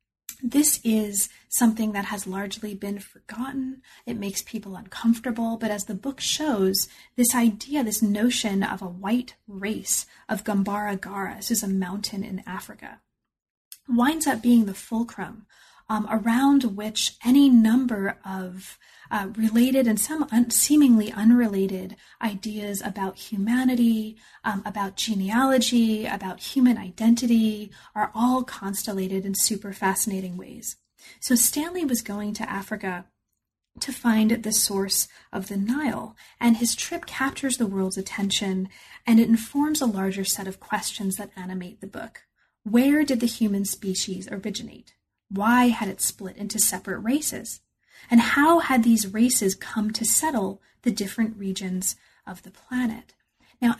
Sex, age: female, 30-49